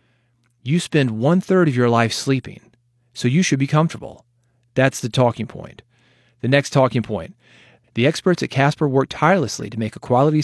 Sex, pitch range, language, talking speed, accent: male, 115-145 Hz, English, 170 wpm, American